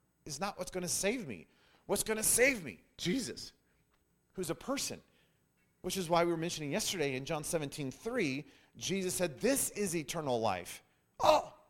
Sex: male